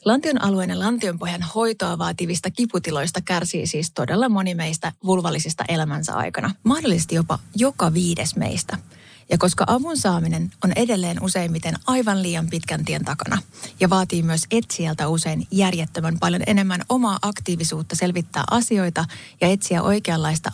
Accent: native